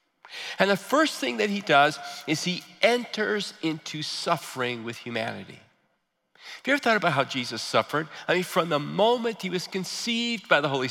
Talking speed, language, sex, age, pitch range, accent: 180 wpm, English, male, 40-59, 140-225 Hz, American